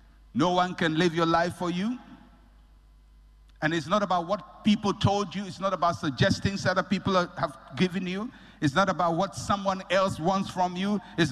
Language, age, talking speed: English, 60-79, 190 wpm